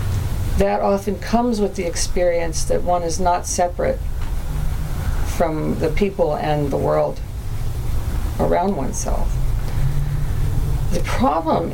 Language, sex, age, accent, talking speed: English, female, 40-59, American, 105 wpm